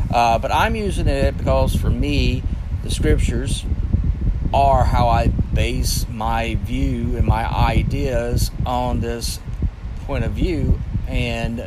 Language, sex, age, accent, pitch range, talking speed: English, male, 40-59, American, 95-120 Hz, 130 wpm